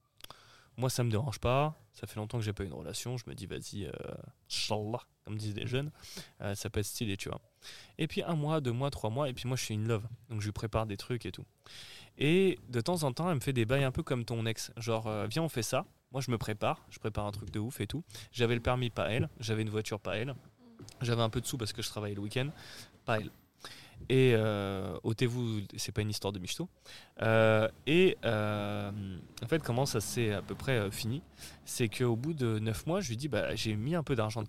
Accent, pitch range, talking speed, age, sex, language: French, 110-135 Hz, 255 wpm, 20-39, male, French